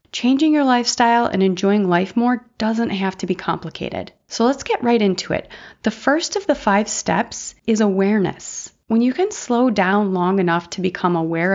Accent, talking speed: American, 185 wpm